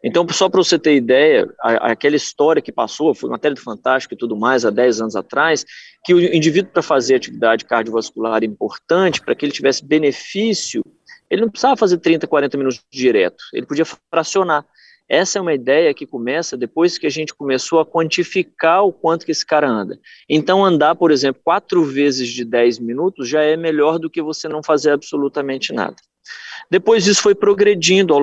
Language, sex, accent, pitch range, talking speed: Portuguese, male, Brazilian, 130-190 Hz, 190 wpm